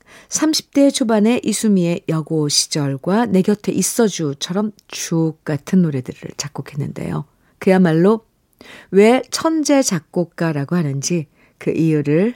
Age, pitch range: 50-69, 150-235 Hz